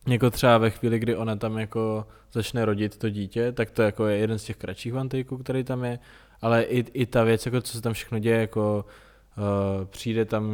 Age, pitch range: 20-39, 105-120 Hz